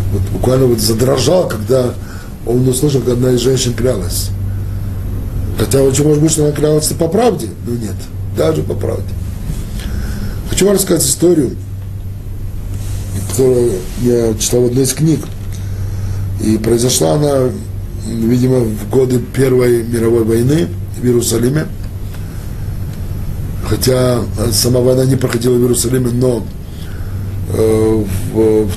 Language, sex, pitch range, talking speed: Russian, male, 100-125 Hz, 120 wpm